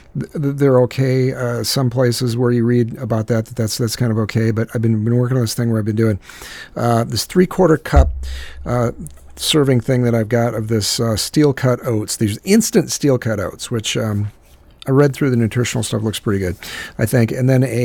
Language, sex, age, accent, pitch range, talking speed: English, male, 50-69, American, 90-120 Hz, 220 wpm